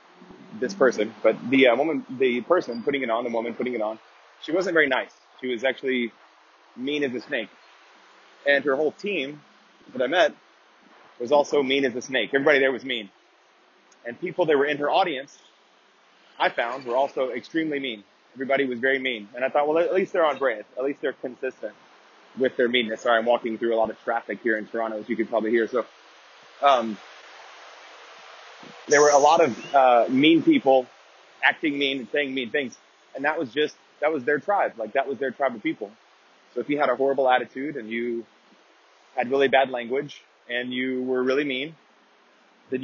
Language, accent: English, American